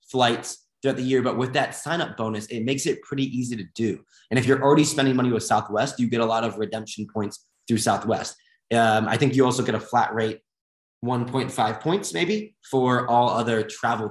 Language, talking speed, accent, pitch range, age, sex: English, 210 wpm, American, 110-130 Hz, 20-39, male